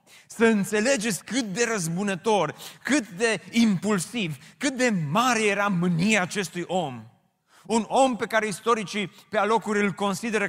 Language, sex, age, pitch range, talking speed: Romanian, male, 30-49, 165-215 Hz, 135 wpm